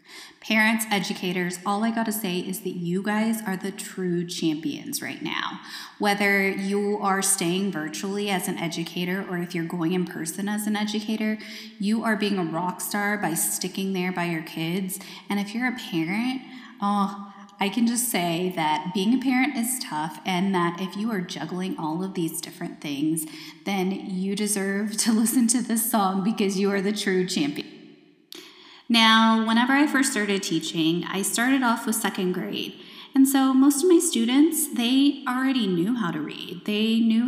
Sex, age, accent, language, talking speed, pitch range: female, 20-39, American, English, 180 wpm, 185-235 Hz